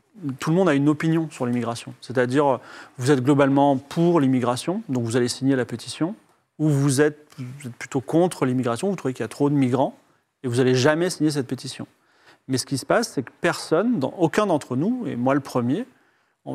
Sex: male